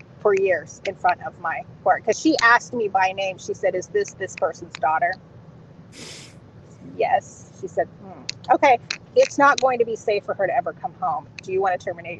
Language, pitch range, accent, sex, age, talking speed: English, 165-265 Hz, American, female, 30-49, 205 wpm